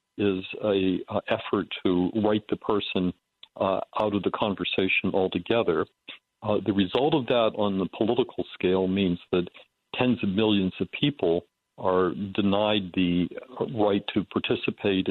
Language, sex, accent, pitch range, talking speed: English, male, American, 95-105 Hz, 145 wpm